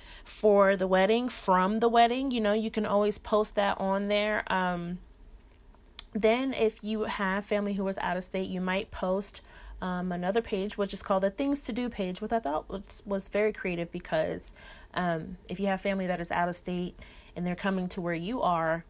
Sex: female